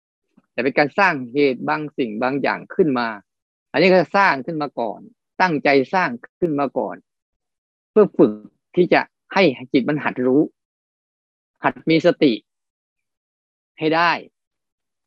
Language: Thai